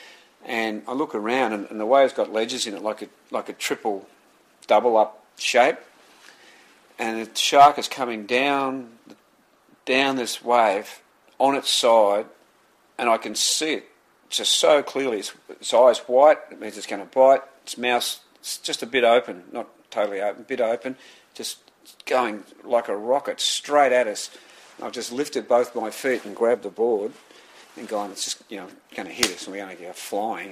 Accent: Australian